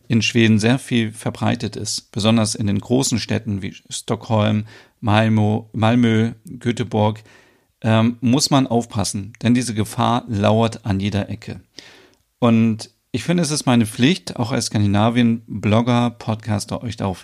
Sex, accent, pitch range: male, German, 105-120 Hz